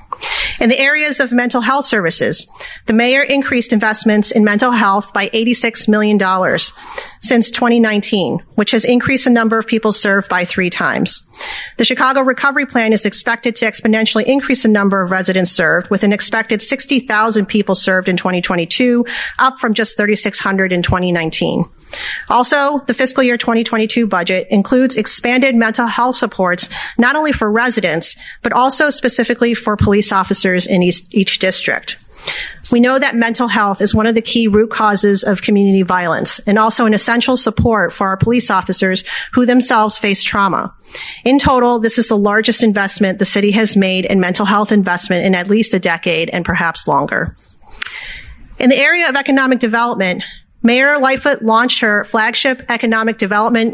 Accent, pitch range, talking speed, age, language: American, 200-245 Hz, 165 wpm, 40-59, English